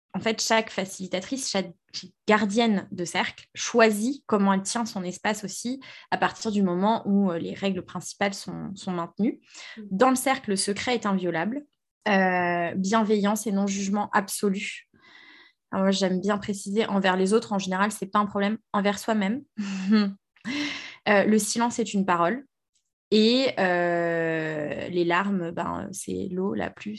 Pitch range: 190-225 Hz